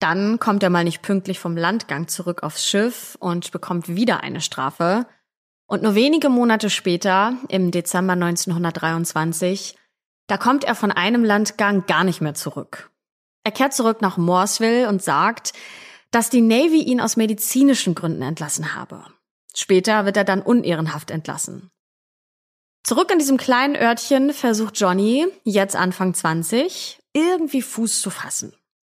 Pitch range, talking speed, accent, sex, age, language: 175-230 Hz, 145 wpm, German, female, 20-39, German